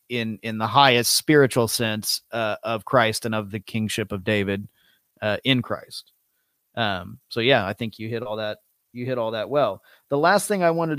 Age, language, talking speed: 30-49, English, 200 wpm